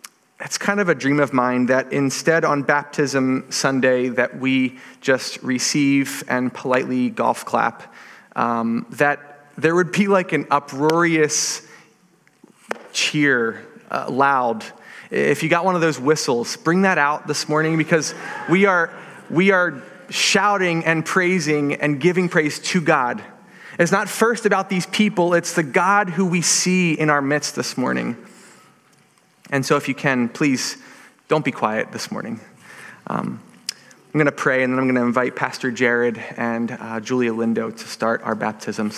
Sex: male